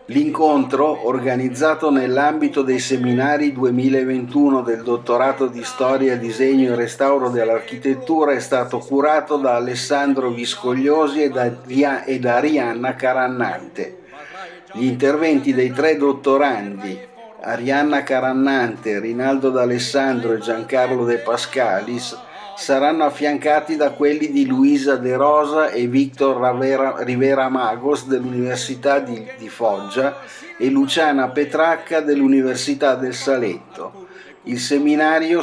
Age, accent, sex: 50-69, native, male